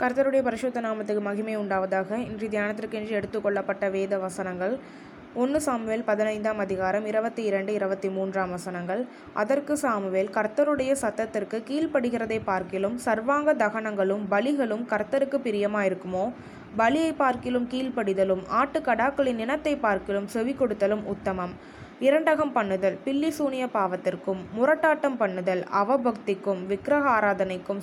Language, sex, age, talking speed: Tamil, female, 20-39, 100 wpm